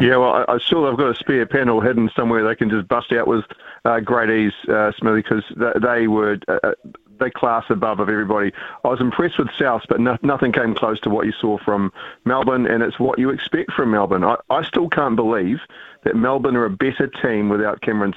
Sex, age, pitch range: male, 40-59, 105-120 Hz